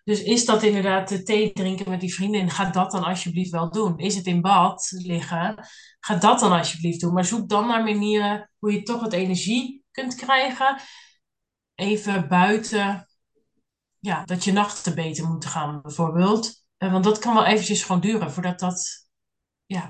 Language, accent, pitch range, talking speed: Dutch, Dutch, 180-215 Hz, 175 wpm